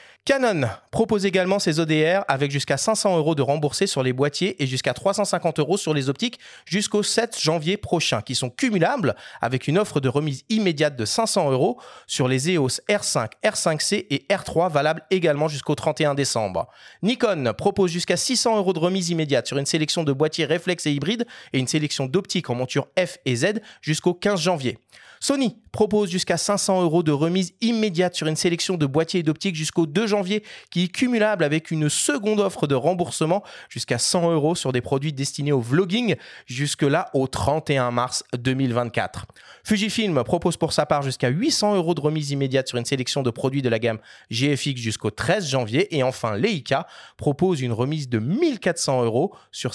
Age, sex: 30-49, male